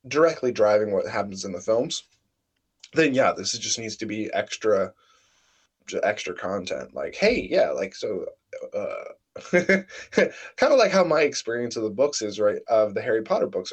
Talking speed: 170 wpm